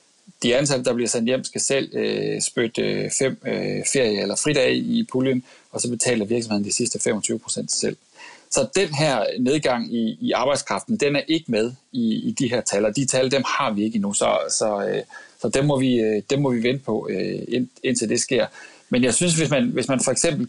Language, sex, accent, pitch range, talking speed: Danish, male, native, 120-170 Hz, 225 wpm